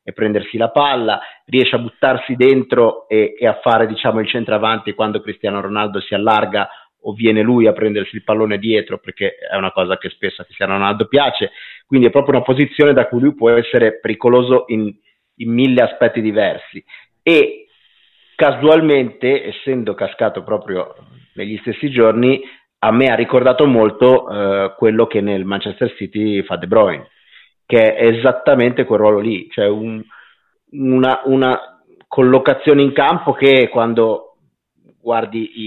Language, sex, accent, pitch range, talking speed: Italian, male, native, 105-130 Hz, 155 wpm